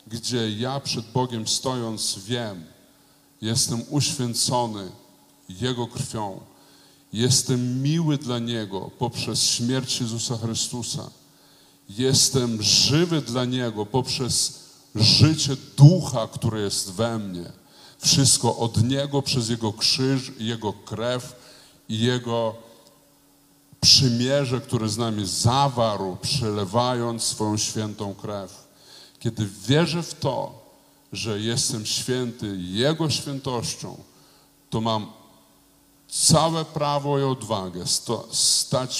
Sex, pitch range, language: male, 110-130 Hz, Polish